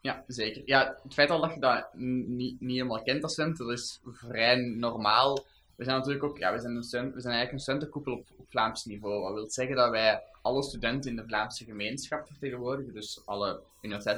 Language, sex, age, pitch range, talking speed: Dutch, male, 20-39, 105-125 Hz, 205 wpm